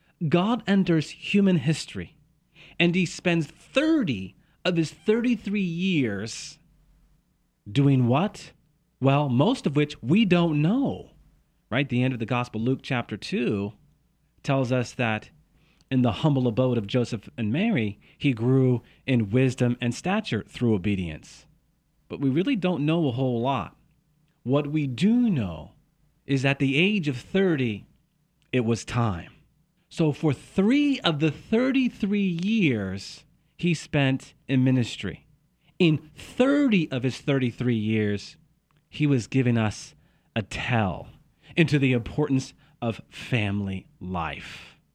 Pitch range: 125-175 Hz